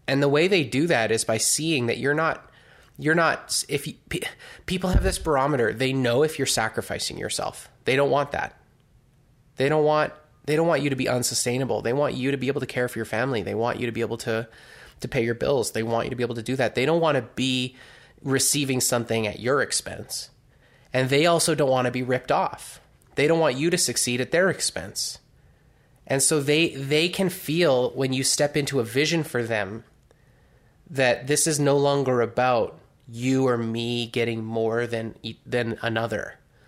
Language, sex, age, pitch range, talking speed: English, male, 20-39, 115-135 Hz, 210 wpm